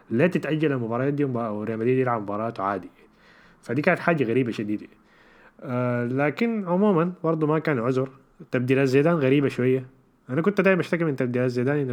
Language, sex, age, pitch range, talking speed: Arabic, male, 20-39, 115-145 Hz, 180 wpm